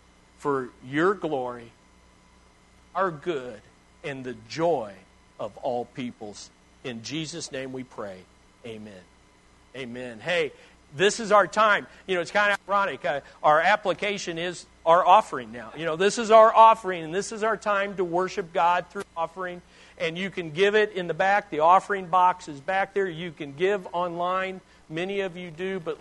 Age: 50-69